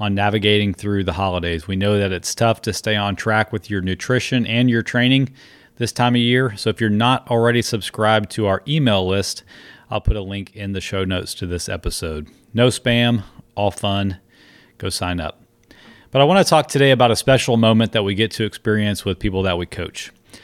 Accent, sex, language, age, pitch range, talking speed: American, male, English, 30-49, 100-125 Hz, 210 wpm